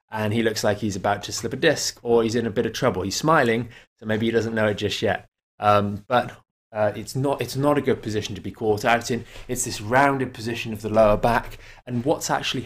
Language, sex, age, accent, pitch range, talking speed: English, male, 20-39, British, 105-125 Hz, 250 wpm